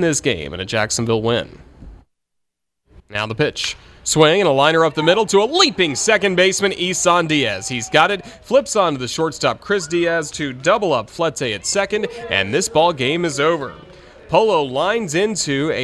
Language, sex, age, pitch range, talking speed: English, male, 30-49, 110-155 Hz, 185 wpm